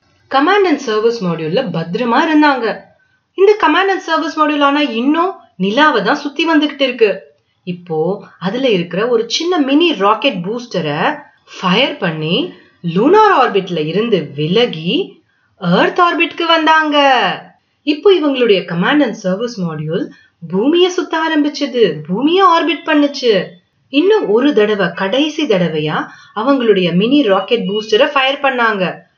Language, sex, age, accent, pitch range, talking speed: Tamil, female, 30-49, native, 190-310 Hz, 55 wpm